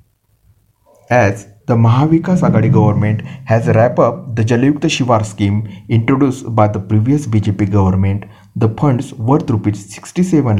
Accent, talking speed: native, 120 wpm